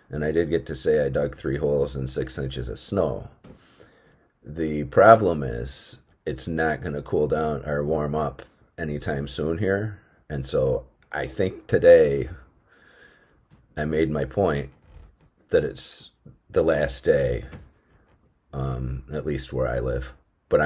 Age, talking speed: 40-59, 150 wpm